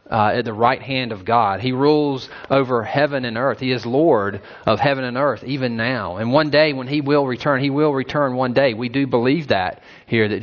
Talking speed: 230 wpm